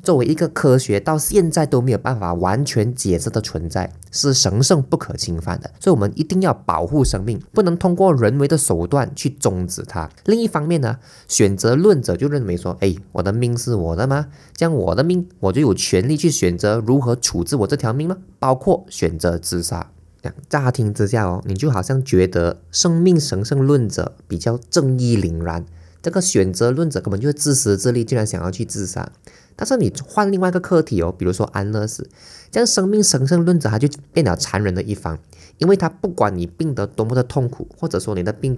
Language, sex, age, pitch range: Chinese, male, 20-39, 95-145 Hz